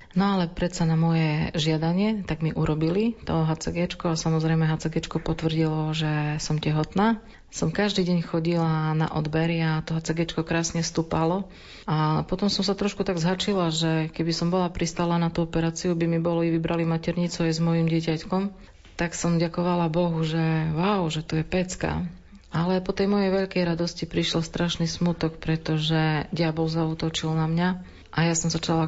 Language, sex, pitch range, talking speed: Slovak, female, 160-175 Hz, 170 wpm